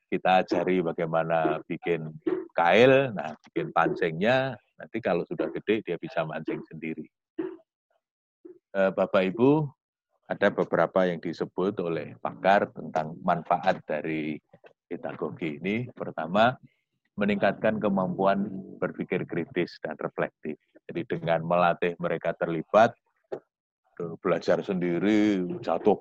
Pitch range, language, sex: 85-125 Hz, Malay, male